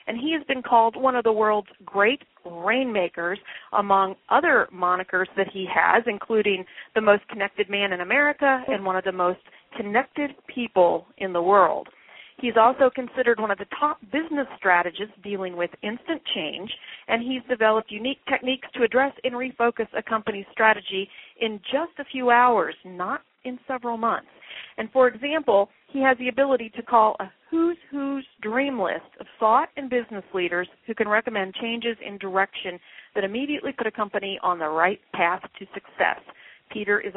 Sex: female